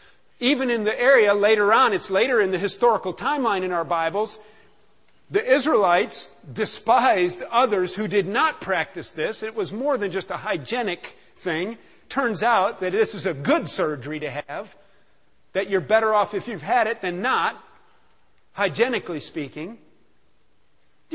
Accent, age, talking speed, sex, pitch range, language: American, 50-69, 155 wpm, male, 195-235 Hz, English